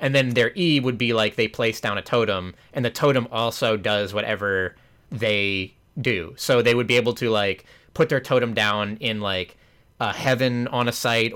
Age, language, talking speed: 20-39, English, 200 wpm